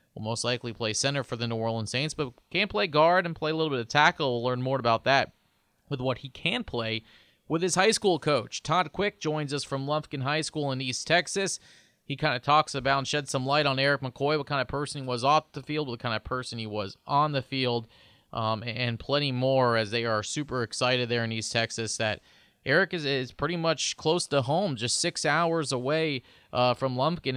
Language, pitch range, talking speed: English, 120-150 Hz, 230 wpm